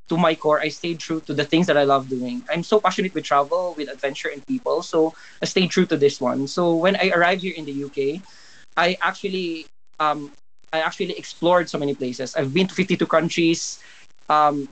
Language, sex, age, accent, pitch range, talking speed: English, male, 20-39, Filipino, 140-175 Hz, 210 wpm